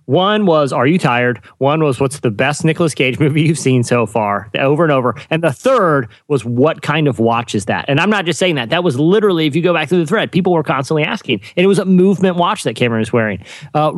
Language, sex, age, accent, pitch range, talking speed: English, male, 30-49, American, 130-180 Hz, 260 wpm